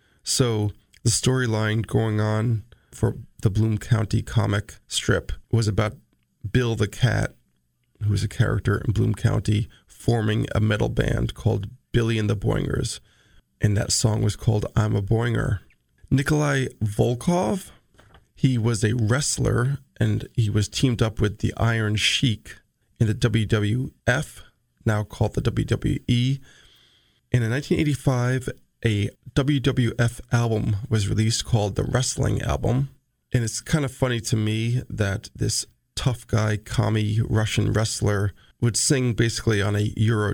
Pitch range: 105-125 Hz